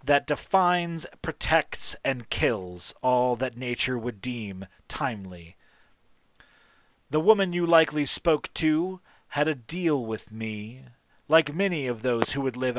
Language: English